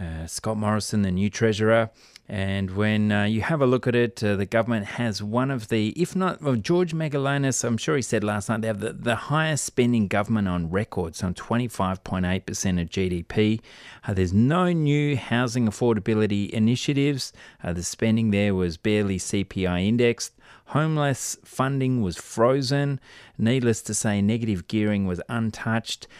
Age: 30-49